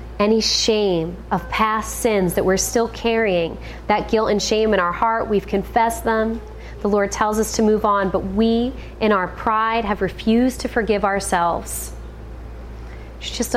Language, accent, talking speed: English, American, 165 wpm